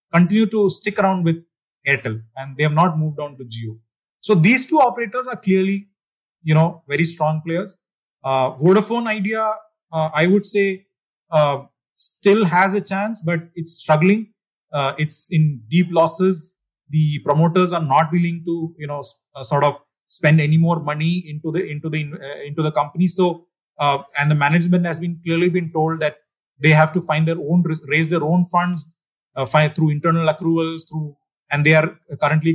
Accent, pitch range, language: Indian, 155-190 Hz, English